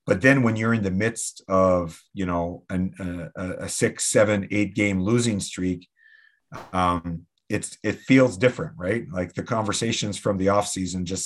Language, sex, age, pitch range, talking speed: English, male, 40-59, 90-105 Hz, 175 wpm